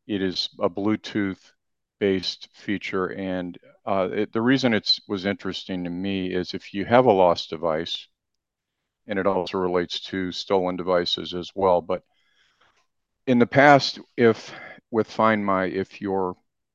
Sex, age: male, 50-69